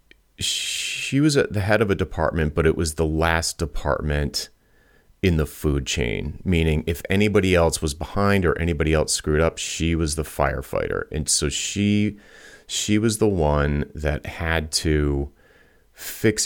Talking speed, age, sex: 160 wpm, 30-49, male